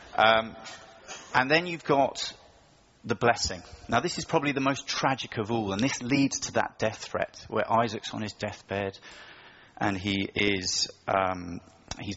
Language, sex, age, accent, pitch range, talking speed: English, male, 30-49, British, 95-115 Hz, 155 wpm